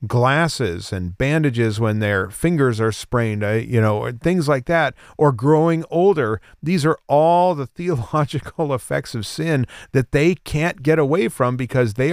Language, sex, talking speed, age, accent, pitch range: English, male, 160 wpm, 40-59, American, 115-160 Hz